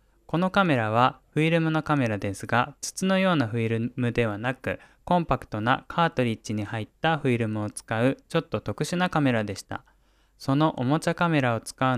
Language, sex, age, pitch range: Japanese, male, 20-39, 115-145 Hz